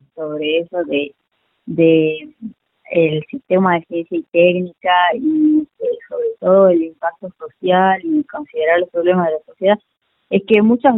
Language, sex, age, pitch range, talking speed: Spanish, female, 20-39, 170-230 Hz, 140 wpm